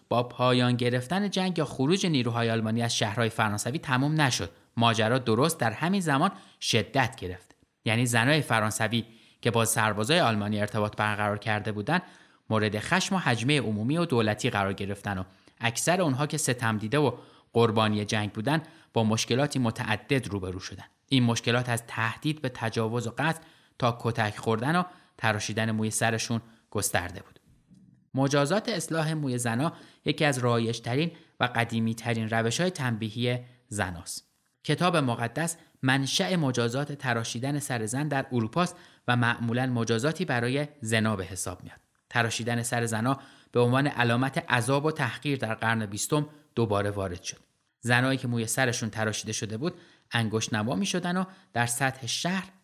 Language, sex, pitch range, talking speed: Persian, male, 110-140 Hz, 150 wpm